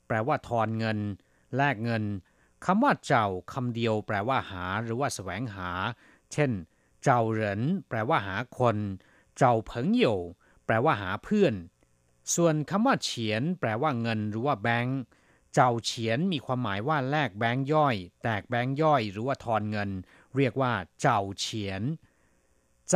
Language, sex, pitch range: Thai, male, 105-145 Hz